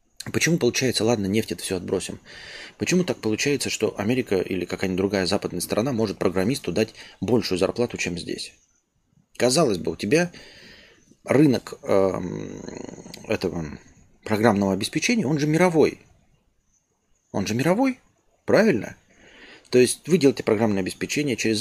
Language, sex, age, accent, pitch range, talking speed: Russian, male, 30-49, native, 100-140 Hz, 130 wpm